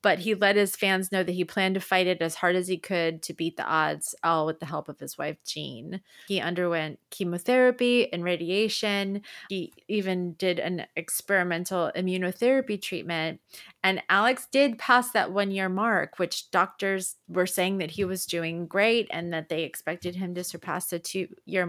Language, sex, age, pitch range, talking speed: English, female, 30-49, 175-205 Hz, 185 wpm